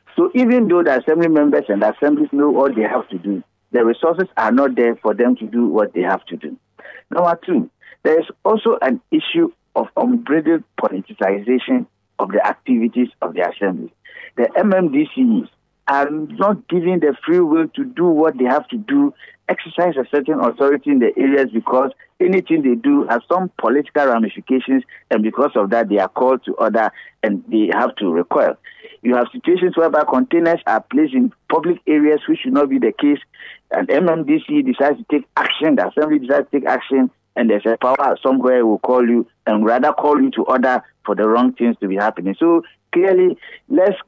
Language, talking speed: English, 190 wpm